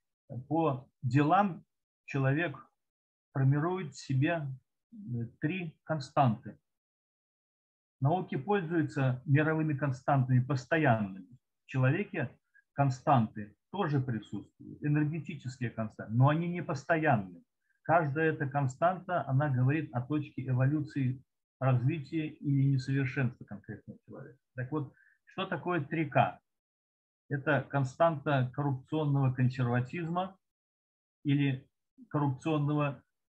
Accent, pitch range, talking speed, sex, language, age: native, 130-155 Hz, 85 wpm, male, Russian, 50-69